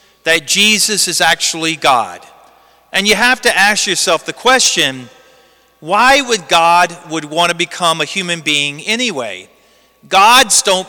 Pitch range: 175-225 Hz